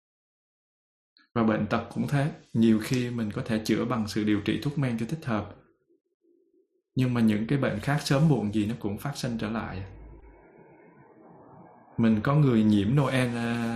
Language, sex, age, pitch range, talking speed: Vietnamese, male, 20-39, 105-130 Hz, 175 wpm